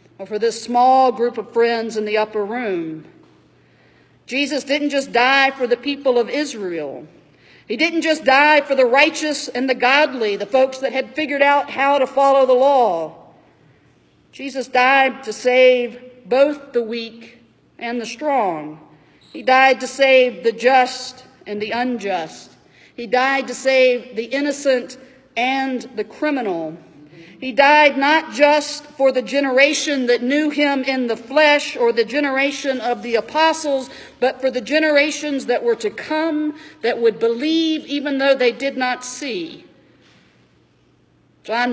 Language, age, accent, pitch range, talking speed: English, 50-69, American, 210-270 Hz, 150 wpm